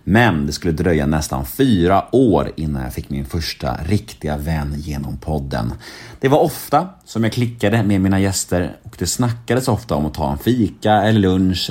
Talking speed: 185 wpm